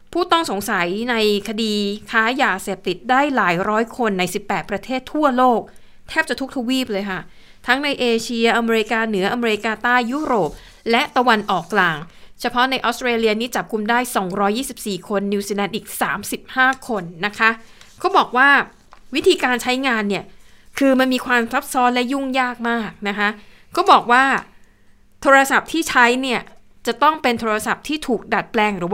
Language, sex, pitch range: Thai, female, 200-255 Hz